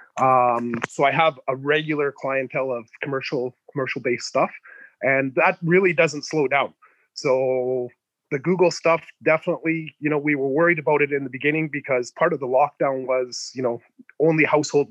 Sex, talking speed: male, 175 wpm